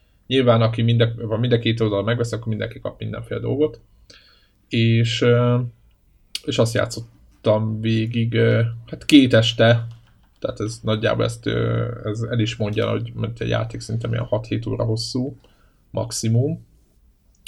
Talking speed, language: 120 wpm, Hungarian